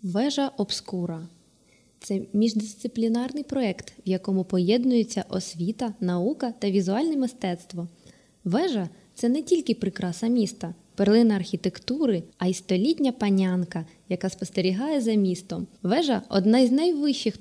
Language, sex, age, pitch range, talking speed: Ukrainian, female, 20-39, 185-240 Hz, 115 wpm